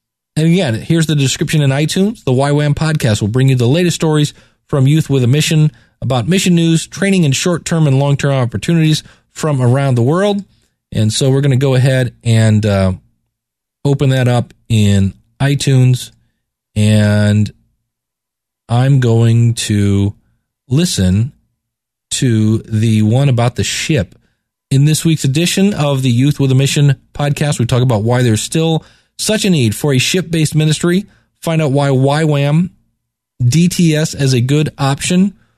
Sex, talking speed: male, 155 wpm